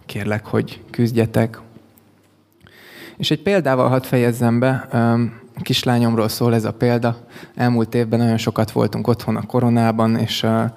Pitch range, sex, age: 110-125 Hz, male, 20-39